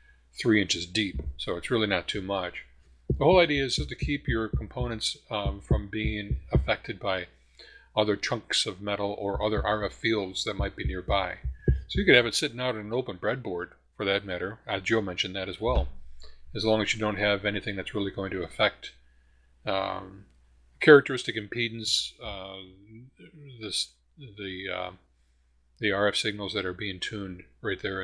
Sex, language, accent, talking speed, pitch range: male, English, American, 180 wpm, 90-115 Hz